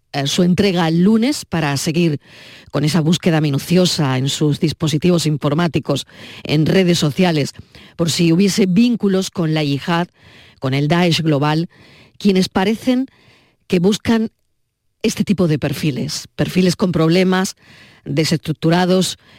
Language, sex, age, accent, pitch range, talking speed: Spanish, female, 40-59, Spanish, 150-190 Hz, 125 wpm